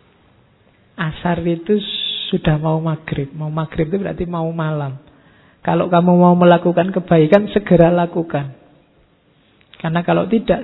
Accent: native